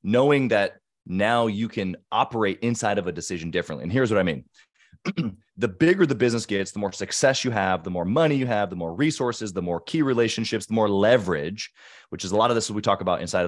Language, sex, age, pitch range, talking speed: English, male, 30-49, 90-125 Hz, 225 wpm